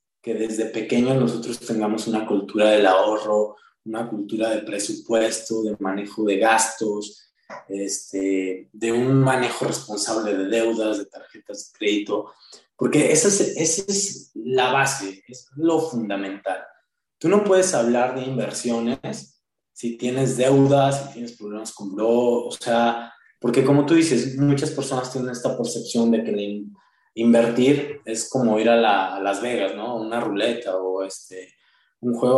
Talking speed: 150 wpm